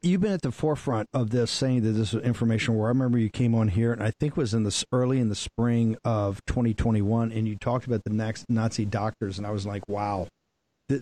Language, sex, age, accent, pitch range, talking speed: English, male, 50-69, American, 105-125 Hz, 250 wpm